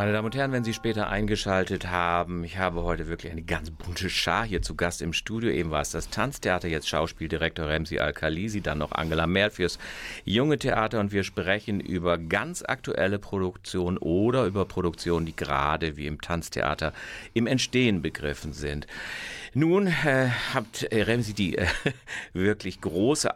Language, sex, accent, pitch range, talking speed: German, male, German, 85-105 Hz, 170 wpm